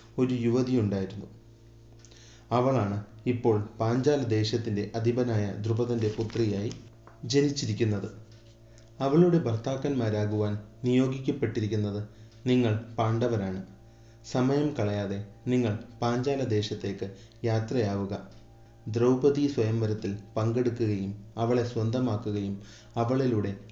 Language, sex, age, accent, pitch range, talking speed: Malayalam, male, 30-49, native, 105-125 Hz, 70 wpm